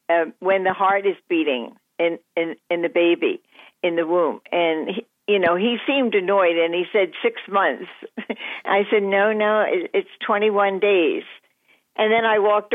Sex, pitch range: female, 180-230 Hz